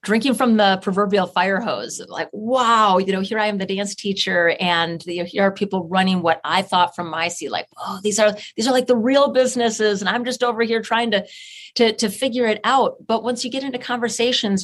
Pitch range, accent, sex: 175-210 Hz, American, female